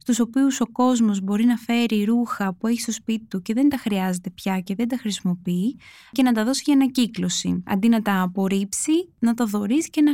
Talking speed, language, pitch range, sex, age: 220 wpm, Greek, 200-260 Hz, female, 20-39